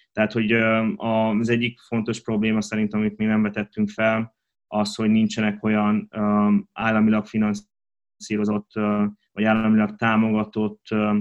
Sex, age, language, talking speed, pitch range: male, 20-39, Hungarian, 110 wpm, 105-115 Hz